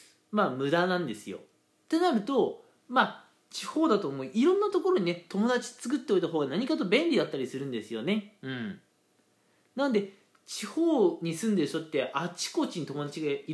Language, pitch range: Japanese, 160-255 Hz